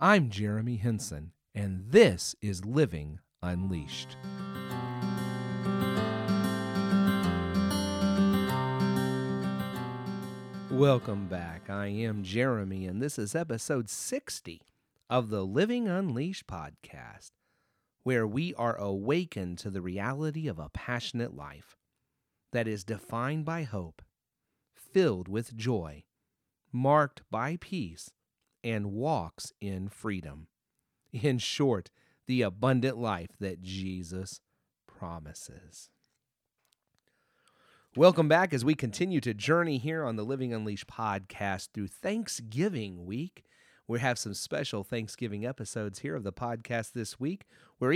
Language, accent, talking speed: English, American, 110 wpm